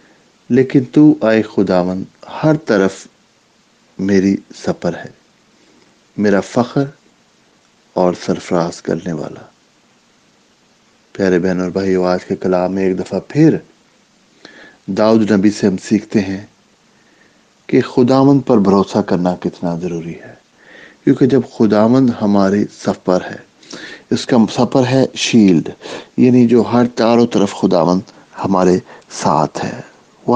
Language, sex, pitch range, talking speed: English, male, 95-125 Hz, 115 wpm